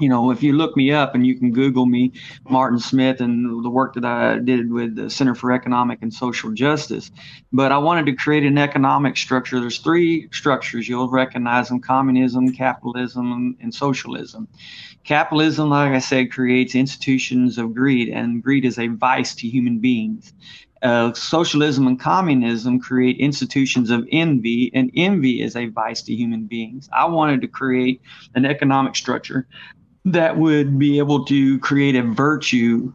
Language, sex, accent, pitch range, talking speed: English, male, American, 125-145 Hz, 170 wpm